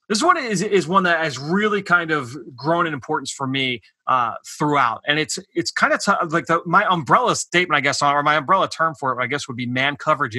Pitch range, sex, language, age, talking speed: 150-175 Hz, male, English, 30-49, 245 wpm